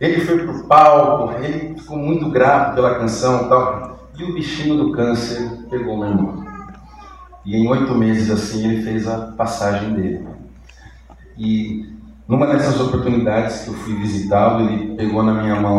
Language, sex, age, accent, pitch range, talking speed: Portuguese, male, 40-59, Brazilian, 95-130 Hz, 165 wpm